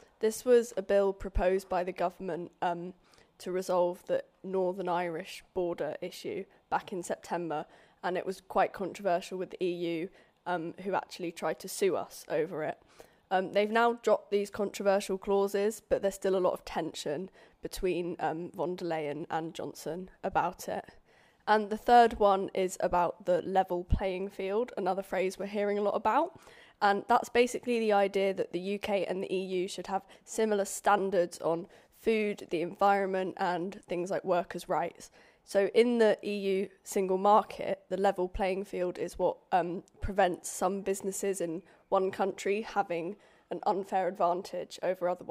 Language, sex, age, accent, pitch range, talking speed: English, female, 20-39, British, 180-205 Hz, 165 wpm